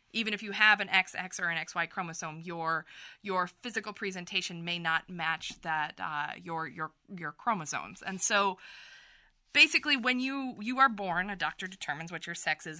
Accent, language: American, English